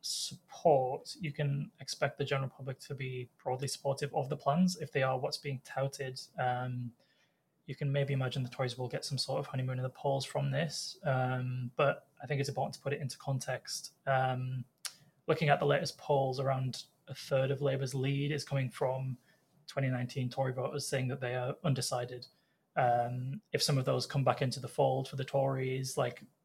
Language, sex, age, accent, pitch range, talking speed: English, male, 20-39, British, 130-145 Hz, 195 wpm